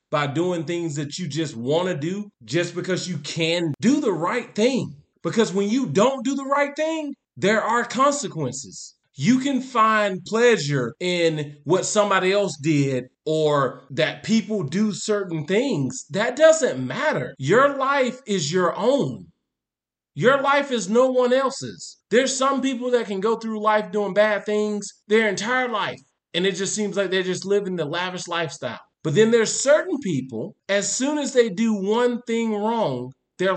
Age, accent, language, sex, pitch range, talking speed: 30-49, American, English, male, 180-250 Hz, 170 wpm